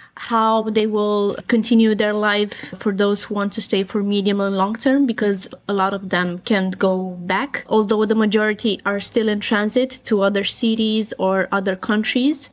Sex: female